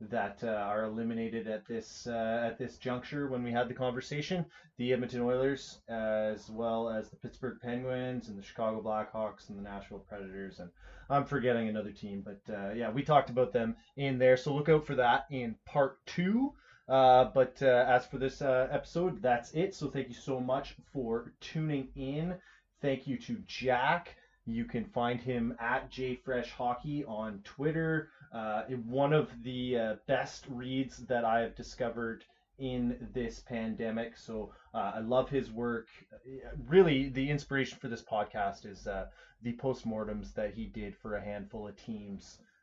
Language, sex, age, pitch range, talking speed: English, male, 20-39, 110-135 Hz, 175 wpm